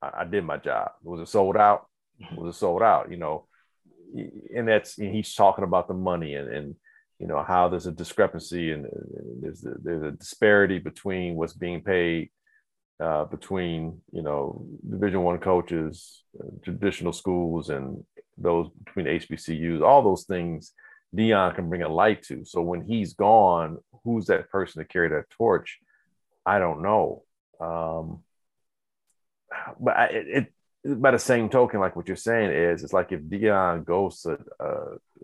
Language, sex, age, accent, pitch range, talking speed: English, male, 40-59, American, 85-115 Hz, 170 wpm